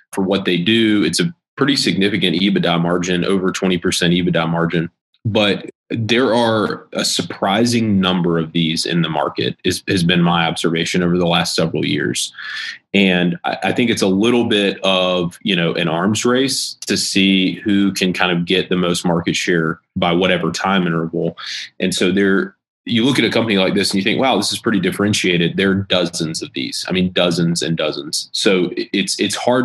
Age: 20-39